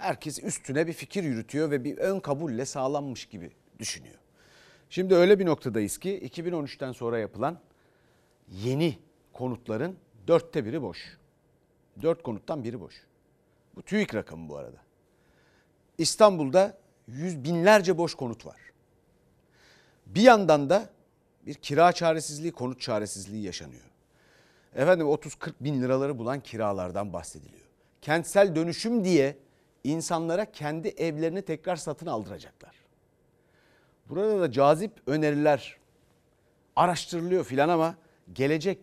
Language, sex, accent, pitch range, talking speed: Turkish, male, native, 125-175 Hz, 115 wpm